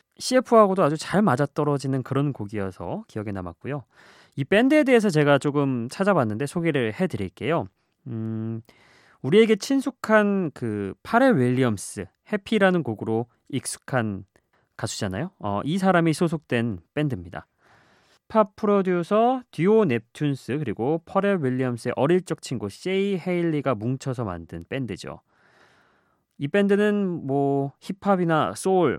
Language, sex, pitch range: Korean, male, 115-180 Hz